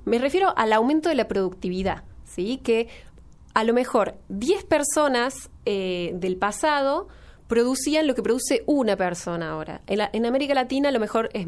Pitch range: 195-255 Hz